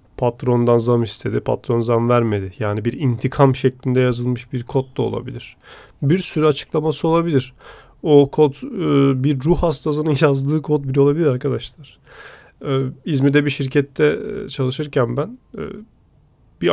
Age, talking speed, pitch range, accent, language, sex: 40-59, 125 wpm, 125-155 Hz, native, Turkish, male